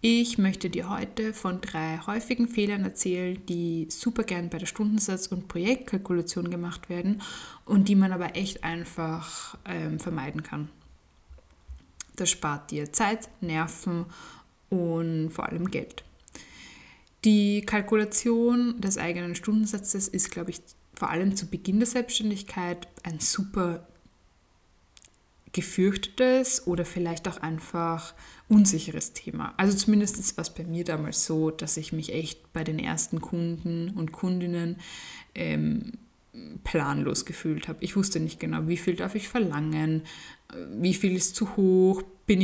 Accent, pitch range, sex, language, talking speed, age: German, 160-200 Hz, female, German, 135 wpm, 10-29